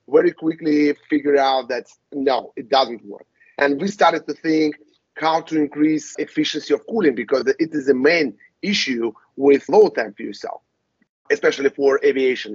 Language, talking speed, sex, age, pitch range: English, 160 wpm, male, 30-49, 135-170 Hz